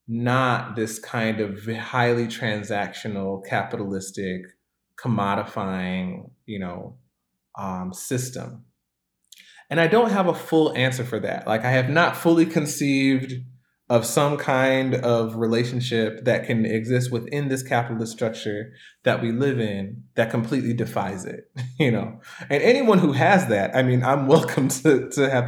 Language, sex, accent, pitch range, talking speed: English, male, American, 105-130 Hz, 145 wpm